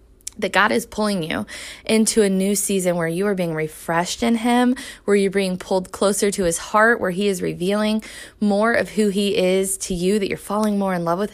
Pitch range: 180-215 Hz